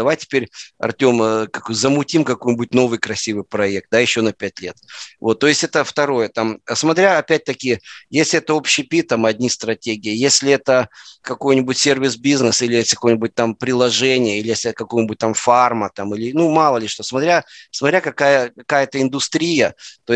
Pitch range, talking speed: 110-135 Hz, 165 wpm